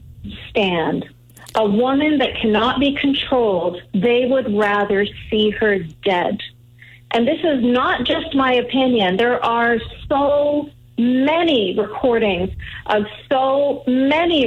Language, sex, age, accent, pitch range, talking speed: English, female, 50-69, American, 205-260 Hz, 115 wpm